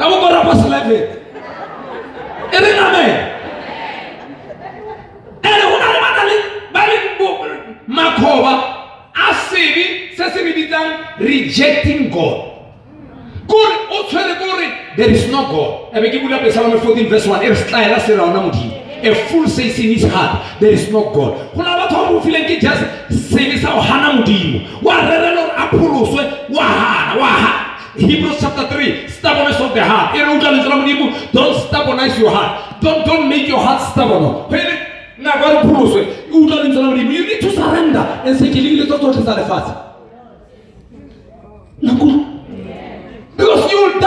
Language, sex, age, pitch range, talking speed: English, male, 40-59, 265-375 Hz, 55 wpm